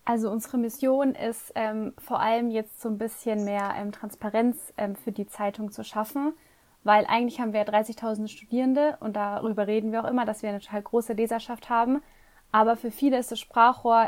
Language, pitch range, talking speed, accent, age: German, 210-235 Hz, 190 wpm, German, 20-39